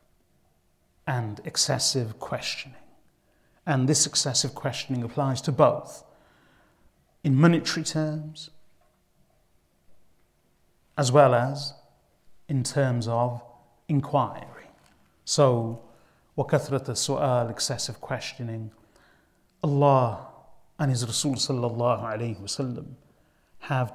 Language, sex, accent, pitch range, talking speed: English, male, British, 120-145 Hz, 75 wpm